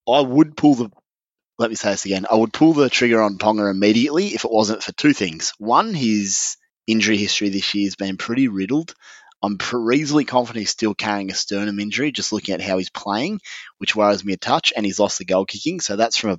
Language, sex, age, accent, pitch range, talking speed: English, male, 20-39, Australian, 95-105 Hz, 235 wpm